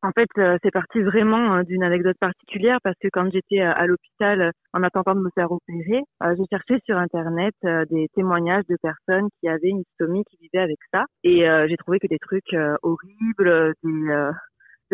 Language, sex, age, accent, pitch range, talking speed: French, female, 30-49, French, 175-210 Hz, 210 wpm